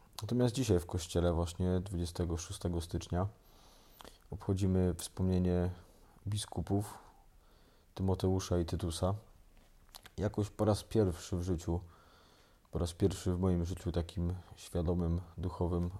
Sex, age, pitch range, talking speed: male, 20-39, 85-100 Hz, 105 wpm